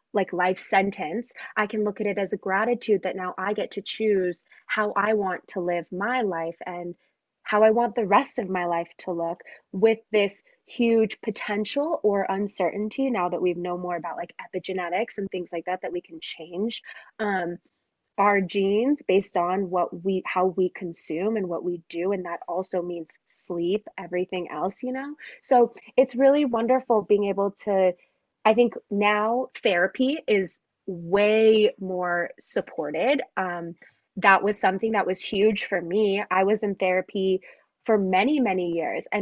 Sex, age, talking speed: female, 20-39, 175 wpm